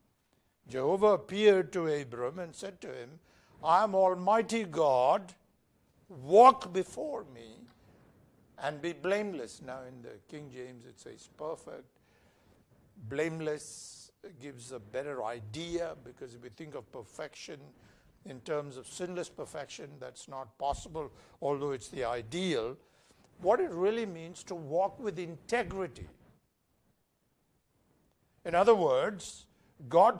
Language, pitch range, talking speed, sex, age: English, 140-195 Hz, 120 wpm, male, 60-79